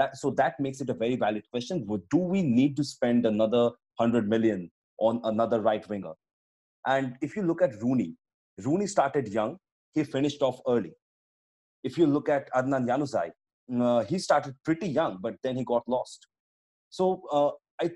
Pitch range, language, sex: 115-140 Hz, English, male